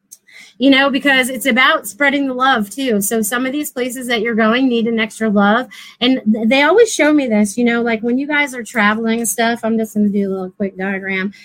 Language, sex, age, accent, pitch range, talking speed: English, female, 30-49, American, 220-260 Hz, 240 wpm